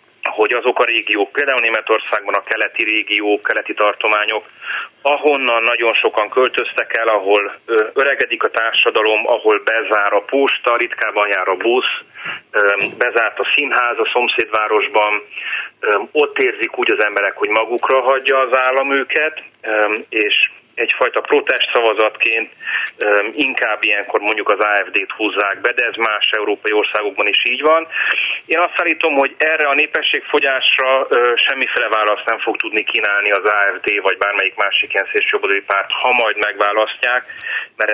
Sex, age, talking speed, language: male, 30-49, 140 wpm, Hungarian